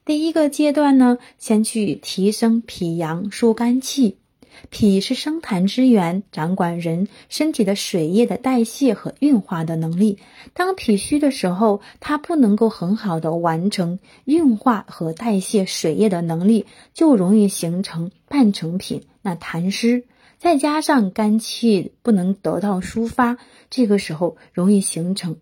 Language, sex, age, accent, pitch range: Chinese, female, 20-39, native, 180-245 Hz